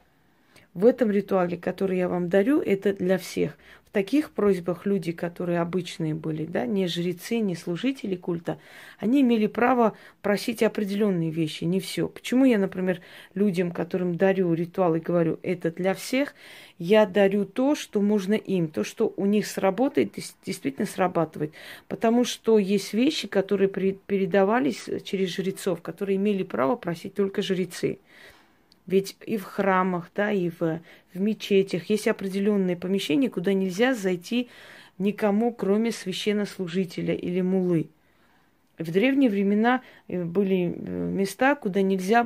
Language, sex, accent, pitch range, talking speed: Russian, female, native, 185-220 Hz, 135 wpm